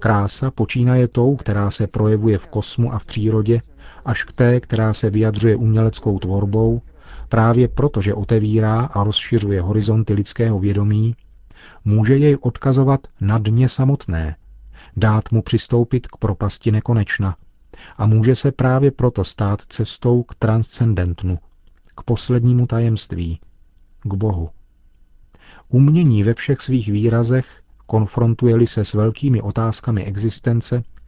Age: 40-59